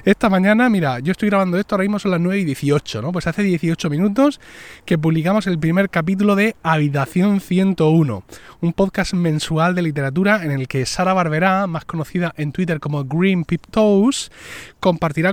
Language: Spanish